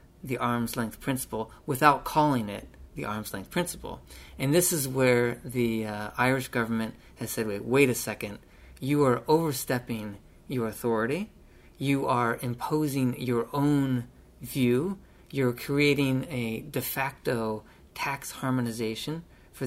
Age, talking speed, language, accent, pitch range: 40-59, 130 wpm, English, American, 110-135 Hz